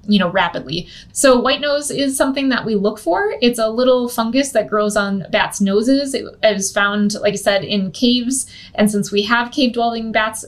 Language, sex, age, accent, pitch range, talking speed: English, female, 20-39, American, 200-255 Hz, 205 wpm